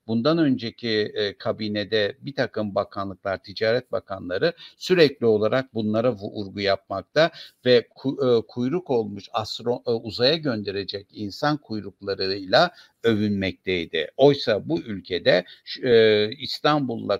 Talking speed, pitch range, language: 85 wpm, 105-135 Hz, Turkish